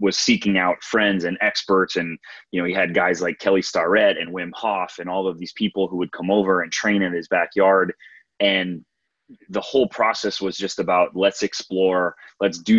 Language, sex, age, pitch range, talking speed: English, male, 20-39, 90-100 Hz, 200 wpm